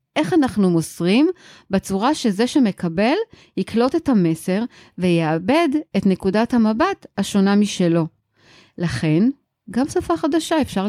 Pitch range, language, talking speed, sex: 170-250 Hz, Hebrew, 110 wpm, female